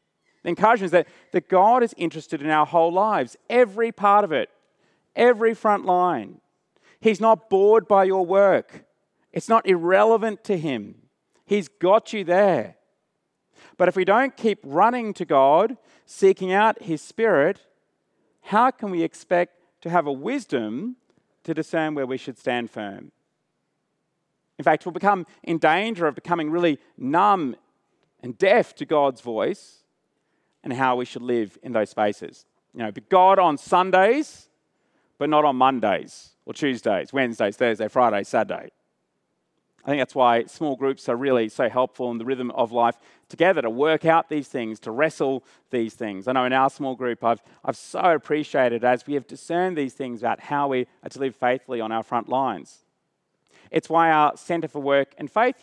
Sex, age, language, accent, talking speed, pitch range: male, 40-59, English, Australian, 175 wpm, 135-195 Hz